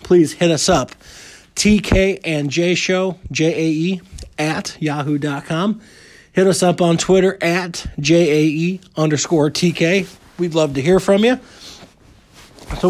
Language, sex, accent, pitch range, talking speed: English, male, American, 155-195 Hz, 145 wpm